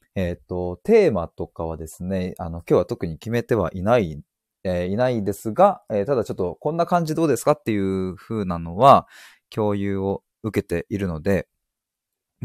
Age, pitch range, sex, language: 20-39, 95-130 Hz, male, Japanese